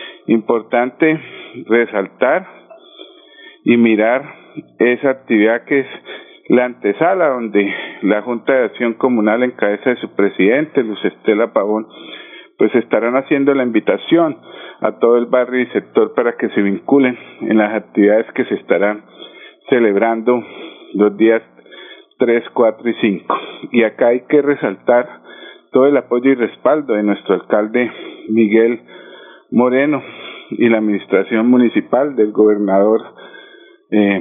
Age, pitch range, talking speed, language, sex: 50-69, 110-130 Hz, 130 wpm, Spanish, male